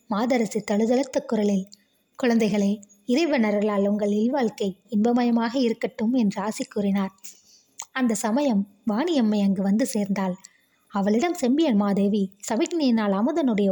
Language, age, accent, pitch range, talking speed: Tamil, 20-39, native, 205-245 Hz, 100 wpm